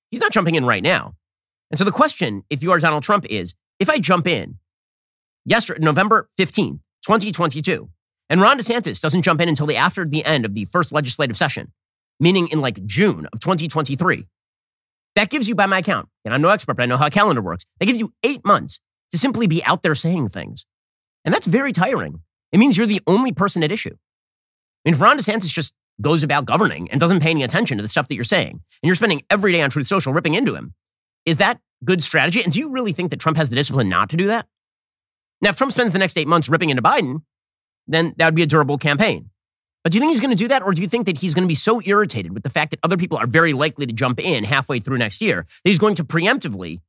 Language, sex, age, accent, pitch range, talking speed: English, male, 30-49, American, 125-195 Hz, 250 wpm